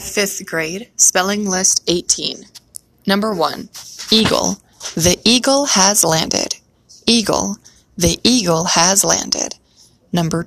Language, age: English, 20-39